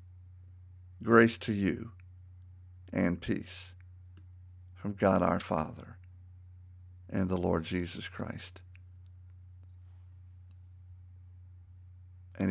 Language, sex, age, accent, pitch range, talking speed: English, male, 50-69, American, 90-100 Hz, 70 wpm